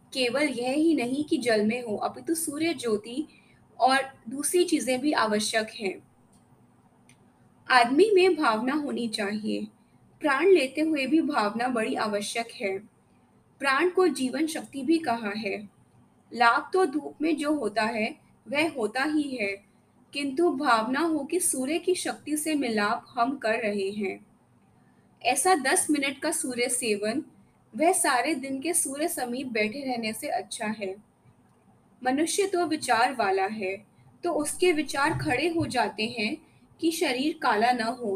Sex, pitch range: female, 230-315 Hz